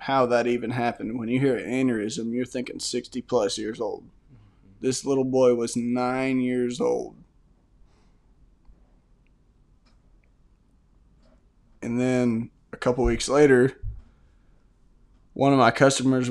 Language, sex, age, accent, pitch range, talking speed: English, male, 20-39, American, 120-145 Hz, 120 wpm